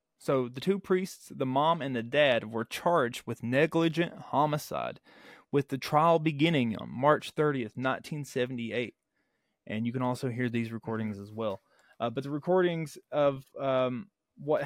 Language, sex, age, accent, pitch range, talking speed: English, male, 30-49, American, 130-165 Hz, 155 wpm